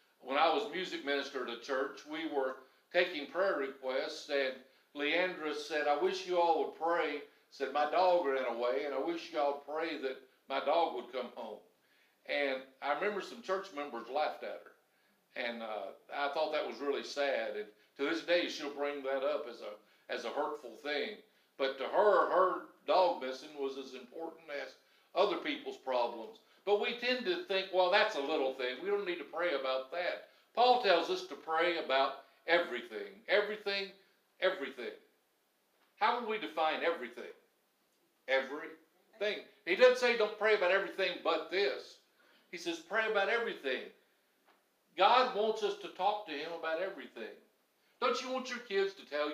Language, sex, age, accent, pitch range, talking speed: English, male, 60-79, American, 140-200 Hz, 180 wpm